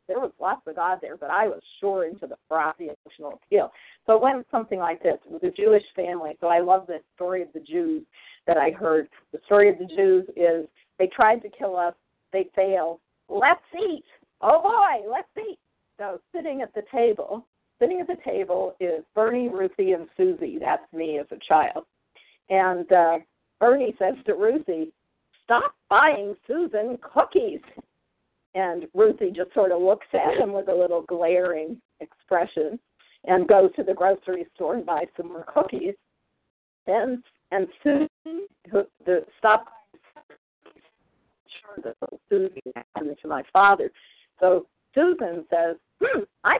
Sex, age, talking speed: female, 50-69, 160 wpm